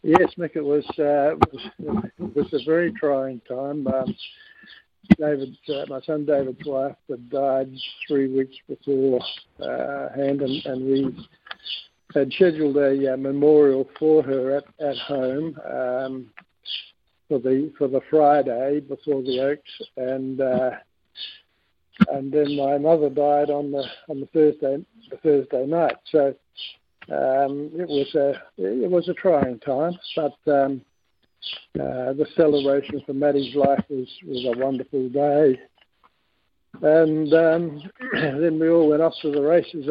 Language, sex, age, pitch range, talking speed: English, male, 60-79, 135-155 Hz, 145 wpm